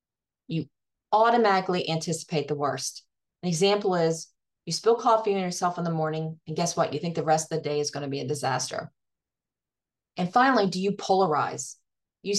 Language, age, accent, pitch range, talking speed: English, 40-59, American, 155-215 Hz, 180 wpm